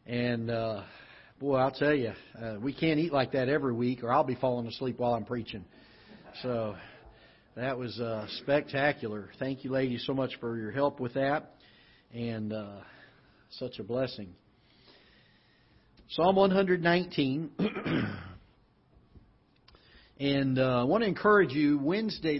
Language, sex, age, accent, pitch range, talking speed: English, male, 50-69, American, 120-145 Hz, 140 wpm